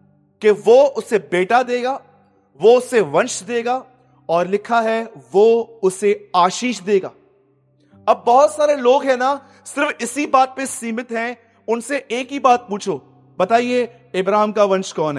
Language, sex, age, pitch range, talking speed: Hindi, male, 30-49, 180-260 Hz, 150 wpm